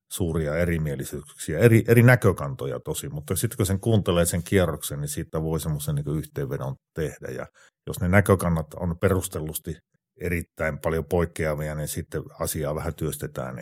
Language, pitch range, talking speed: Finnish, 80-100 Hz, 150 wpm